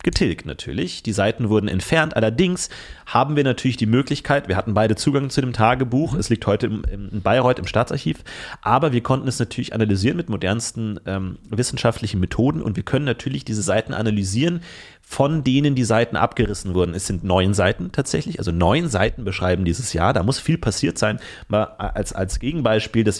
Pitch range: 100-130 Hz